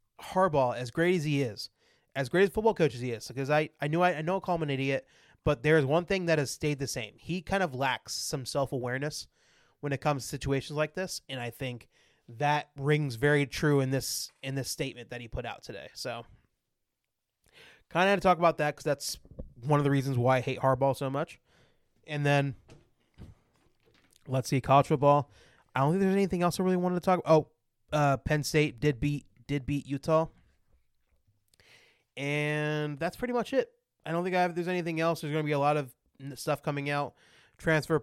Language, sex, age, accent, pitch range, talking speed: English, male, 20-39, American, 135-155 Hz, 215 wpm